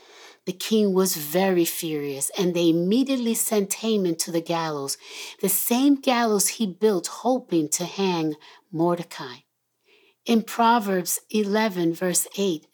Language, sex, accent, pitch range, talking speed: English, female, American, 180-250 Hz, 125 wpm